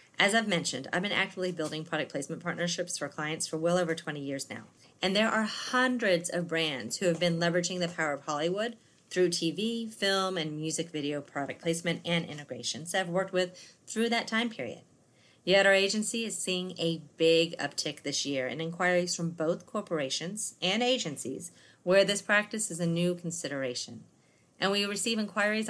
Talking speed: 180 wpm